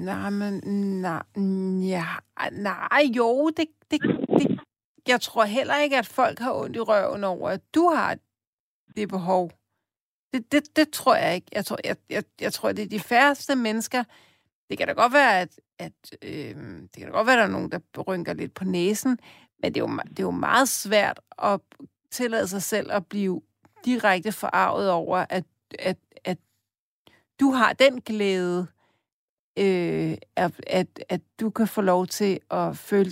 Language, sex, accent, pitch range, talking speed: Danish, female, native, 185-230 Hz, 180 wpm